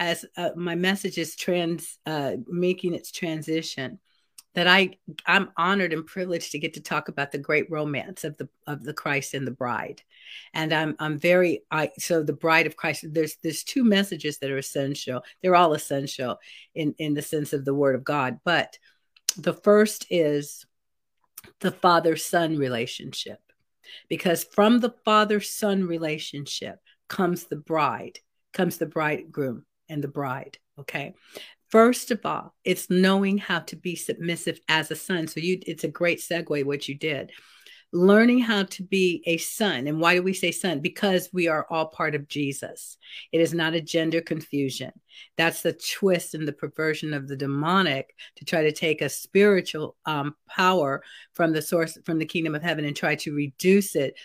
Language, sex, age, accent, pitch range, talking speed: English, female, 50-69, American, 150-185 Hz, 180 wpm